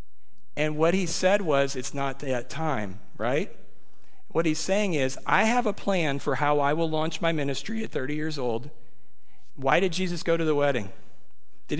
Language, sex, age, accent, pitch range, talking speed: English, male, 50-69, American, 135-180 Hz, 190 wpm